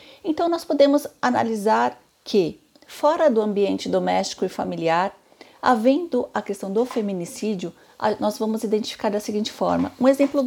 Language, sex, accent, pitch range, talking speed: Portuguese, female, Brazilian, 205-280 Hz, 140 wpm